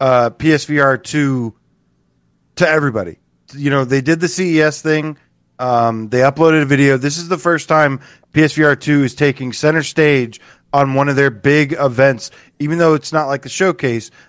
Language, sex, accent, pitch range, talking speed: English, male, American, 125-160 Hz, 165 wpm